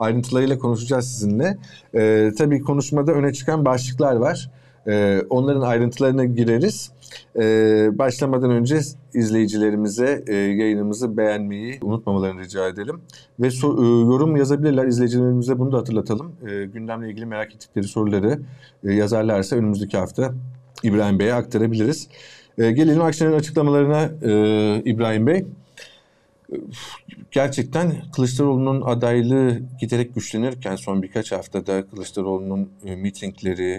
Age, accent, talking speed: 50-69, native, 110 wpm